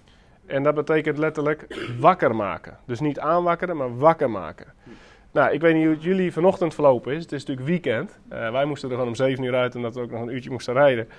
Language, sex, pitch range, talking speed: Dutch, male, 155-210 Hz, 235 wpm